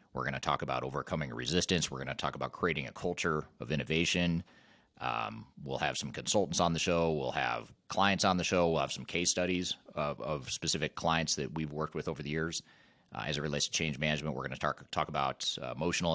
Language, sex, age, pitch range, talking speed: English, male, 30-49, 75-90 Hz, 225 wpm